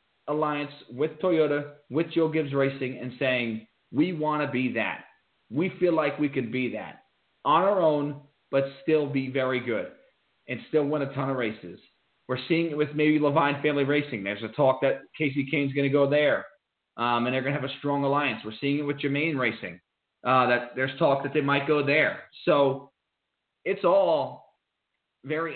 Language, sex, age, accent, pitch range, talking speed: English, male, 30-49, American, 130-150 Hz, 195 wpm